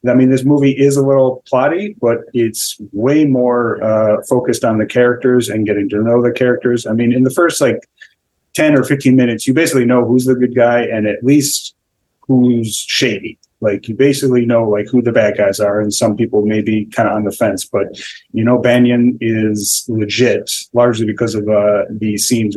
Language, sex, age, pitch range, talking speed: English, male, 30-49, 105-125 Hz, 205 wpm